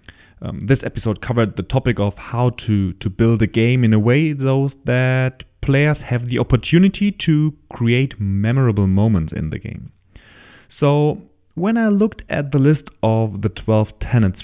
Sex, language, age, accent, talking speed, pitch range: male, English, 30-49, German, 165 wpm, 105-150 Hz